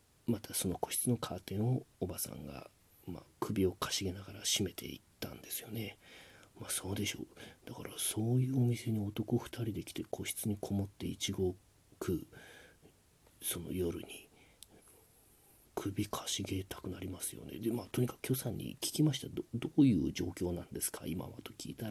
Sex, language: male, Japanese